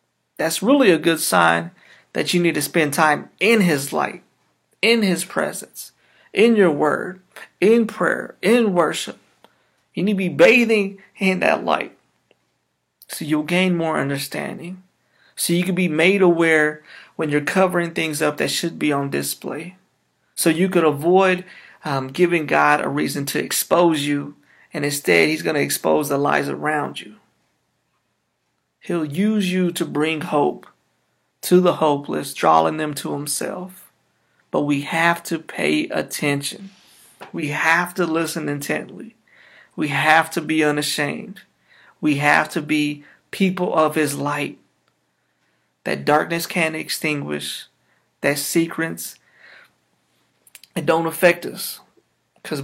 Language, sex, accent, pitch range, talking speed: English, male, American, 150-180 Hz, 140 wpm